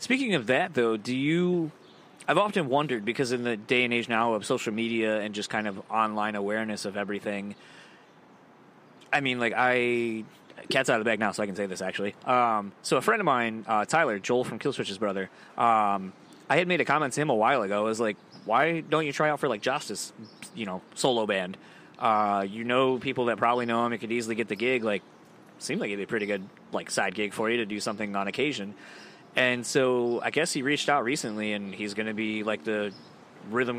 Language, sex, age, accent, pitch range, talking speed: English, male, 20-39, American, 110-125 Hz, 225 wpm